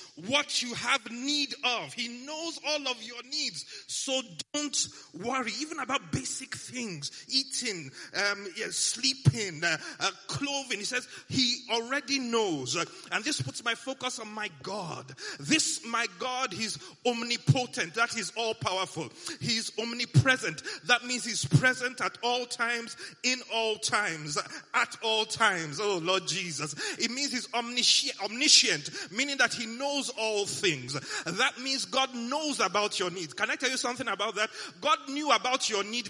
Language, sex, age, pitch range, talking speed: English, male, 30-49, 205-275 Hz, 155 wpm